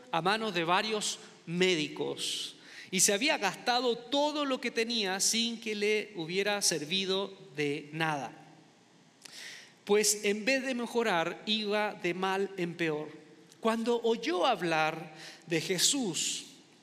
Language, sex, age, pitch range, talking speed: Spanish, male, 40-59, 170-230 Hz, 125 wpm